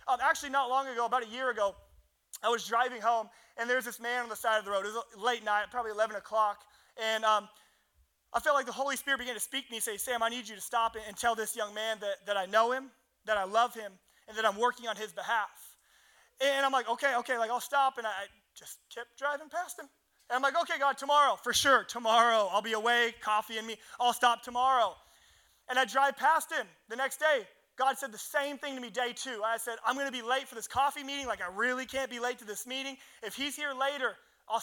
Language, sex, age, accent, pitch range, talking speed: English, male, 20-39, American, 225-275 Hz, 255 wpm